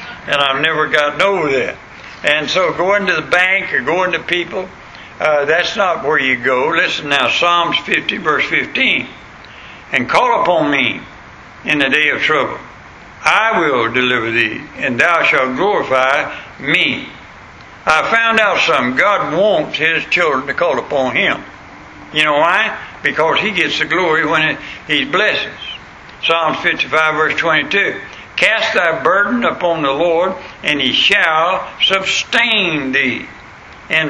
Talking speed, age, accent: 150 wpm, 60-79, American